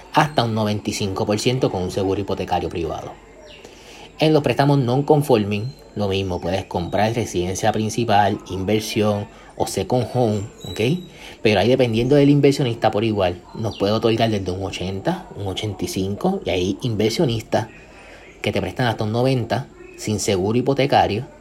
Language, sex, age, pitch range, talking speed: Spanish, male, 30-49, 100-120 Hz, 140 wpm